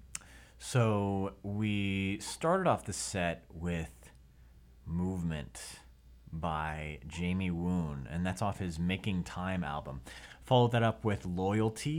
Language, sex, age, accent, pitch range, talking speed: English, male, 30-49, American, 70-100 Hz, 115 wpm